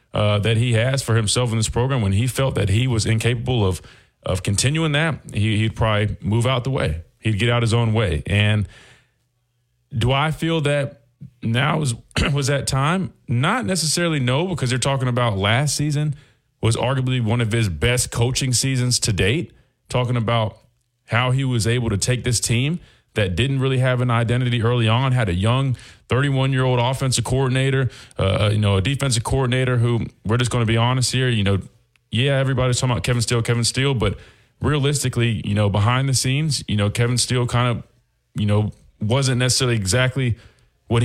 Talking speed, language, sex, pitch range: 185 wpm, English, male, 110-130 Hz